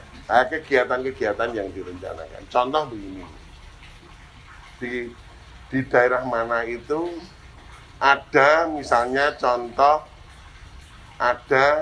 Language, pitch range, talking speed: Indonesian, 100-135 Hz, 70 wpm